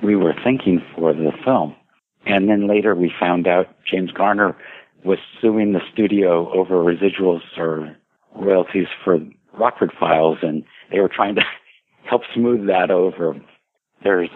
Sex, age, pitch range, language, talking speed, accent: male, 60-79, 85-105 Hz, English, 145 wpm, American